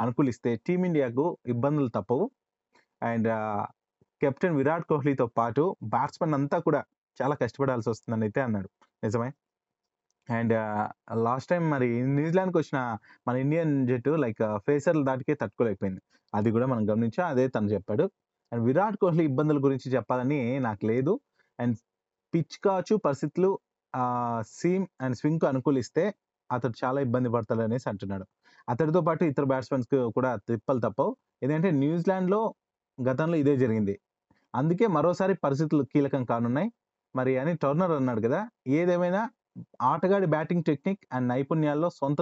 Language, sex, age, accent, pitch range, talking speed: Telugu, male, 20-39, native, 120-165 Hz, 120 wpm